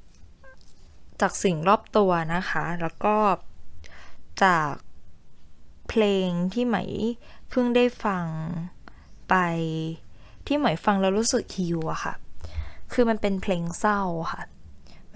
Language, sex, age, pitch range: Thai, female, 10-29, 165-215 Hz